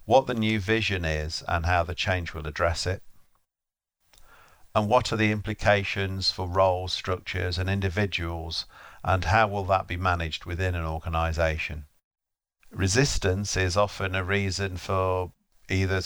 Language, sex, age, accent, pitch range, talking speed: English, male, 50-69, British, 85-100 Hz, 140 wpm